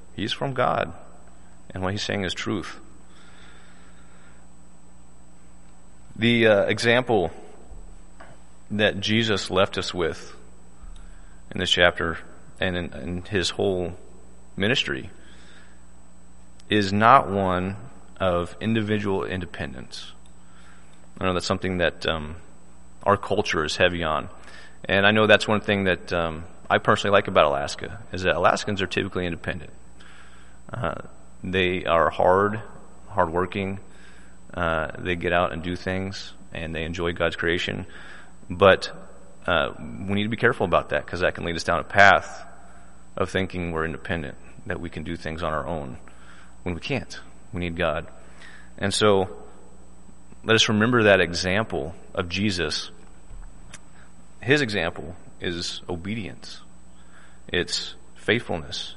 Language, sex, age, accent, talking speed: English, male, 30-49, American, 130 wpm